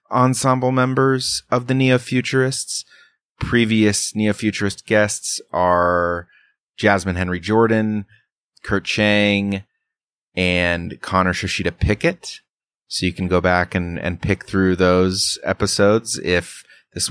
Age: 30-49